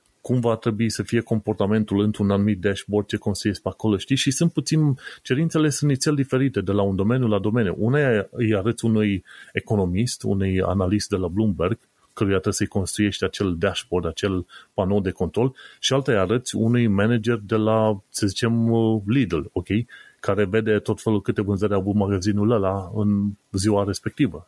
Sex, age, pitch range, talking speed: male, 30-49, 100-125 Hz, 175 wpm